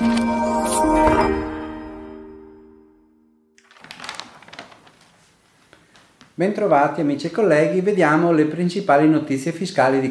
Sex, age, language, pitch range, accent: male, 40-59, Italian, 115-165 Hz, native